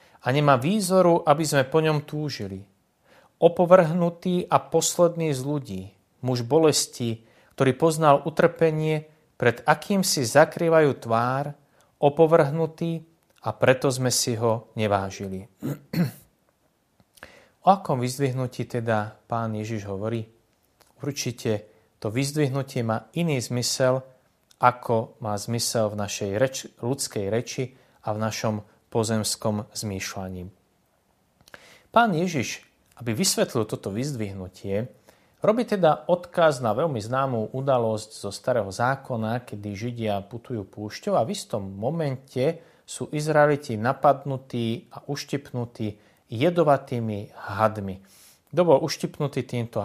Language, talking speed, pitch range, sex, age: Slovak, 110 wpm, 110-150 Hz, male, 30-49